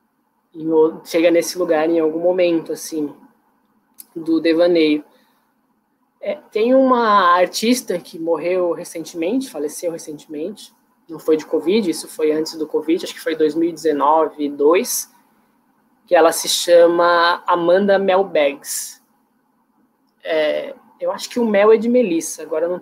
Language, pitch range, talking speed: Portuguese, 170-245 Hz, 130 wpm